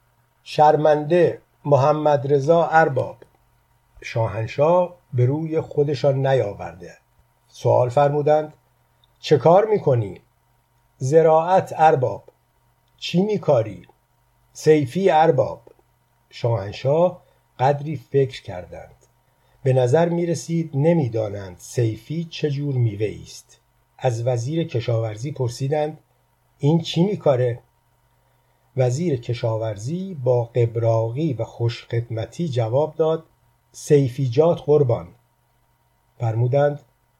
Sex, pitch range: male, 120-155 Hz